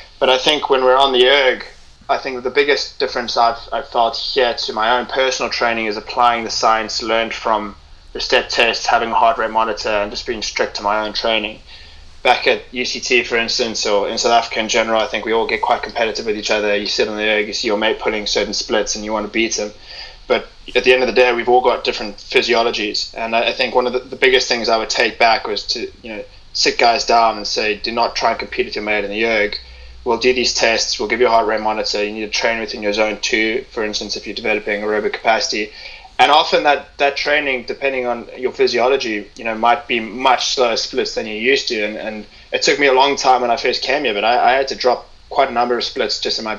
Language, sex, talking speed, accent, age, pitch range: English, male, 260 wpm, Australian, 20-39, 105-130 Hz